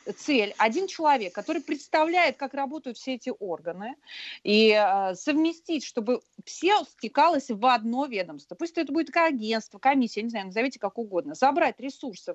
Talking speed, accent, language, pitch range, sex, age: 150 wpm, native, Russian, 205-280 Hz, female, 30-49